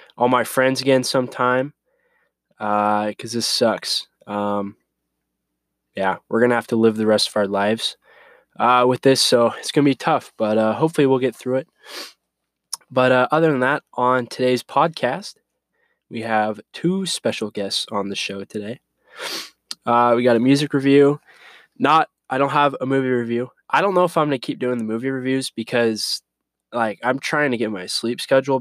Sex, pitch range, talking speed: male, 110-135 Hz, 185 wpm